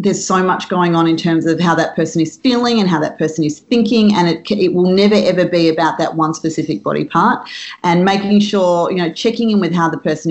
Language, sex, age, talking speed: English, female, 30-49, 250 wpm